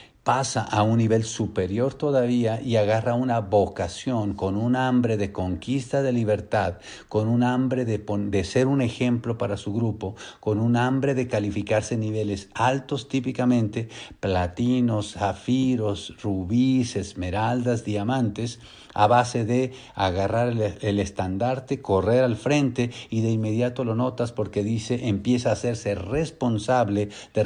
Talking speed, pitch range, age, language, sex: 140 wpm, 100-125 Hz, 50-69, English, male